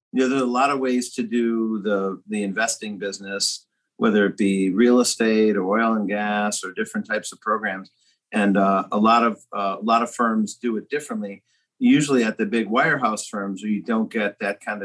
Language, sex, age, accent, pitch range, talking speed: English, male, 50-69, American, 100-125 Hz, 210 wpm